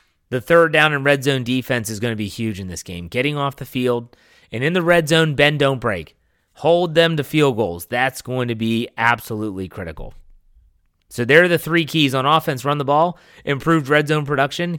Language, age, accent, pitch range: English, 30-49, American, 120-155 Hz